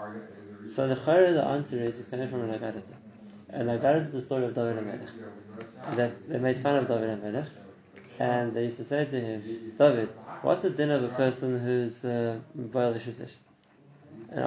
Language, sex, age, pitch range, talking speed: English, male, 20-39, 115-135 Hz, 195 wpm